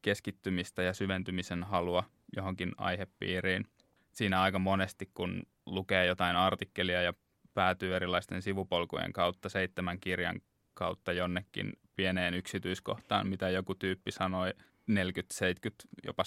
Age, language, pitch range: 20-39, Finnish, 90-105 Hz